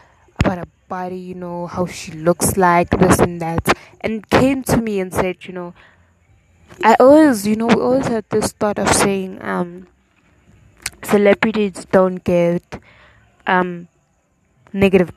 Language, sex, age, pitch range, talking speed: English, female, 20-39, 170-200 Hz, 140 wpm